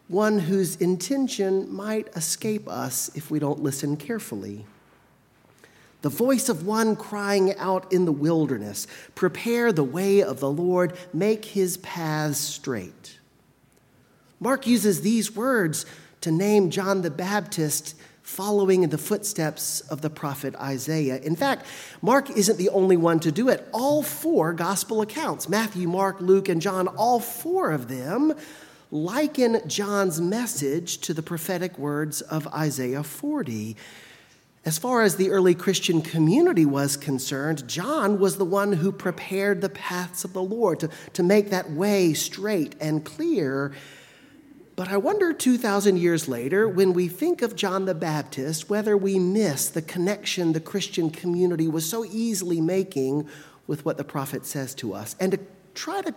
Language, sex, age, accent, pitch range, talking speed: English, male, 40-59, American, 155-210 Hz, 155 wpm